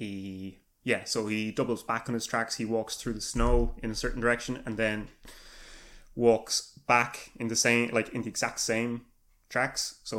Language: English